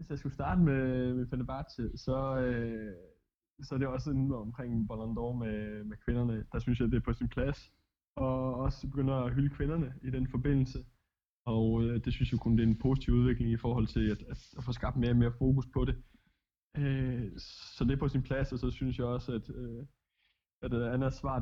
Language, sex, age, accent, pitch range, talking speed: Danish, male, 20-39, native, 115-130 Hz, 220 wpm